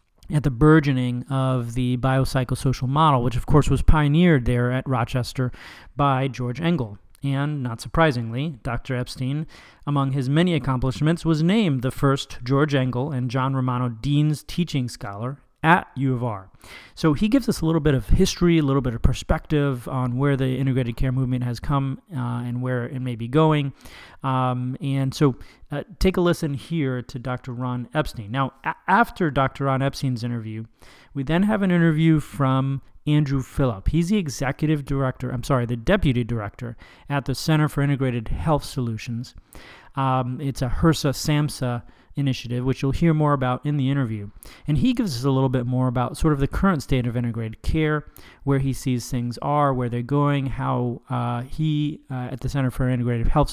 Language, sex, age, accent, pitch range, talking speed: English, male, 30-49, American, 125-150 Hz, 185 wpm